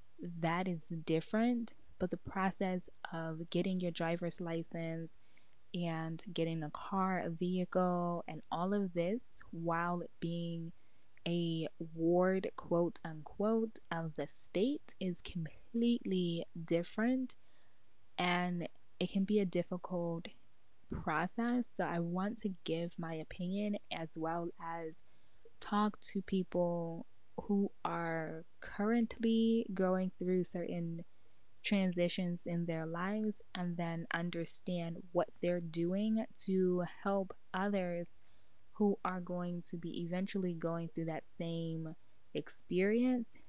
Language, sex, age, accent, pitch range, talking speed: English, female, 10-29, American, 160-185 Hz, 115 wpm